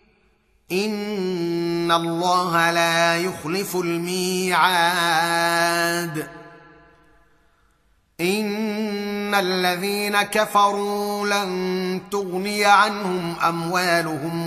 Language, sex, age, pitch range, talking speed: Arabic, male, 30-49, 170-205 Hz, 50 wpm